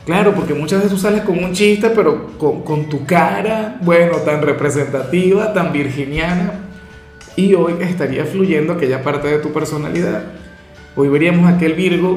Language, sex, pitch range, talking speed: Spanish, male, 145-170 Hz, 165 wpm